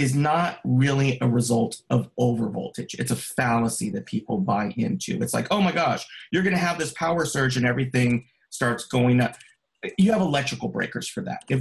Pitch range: 120-170 Hz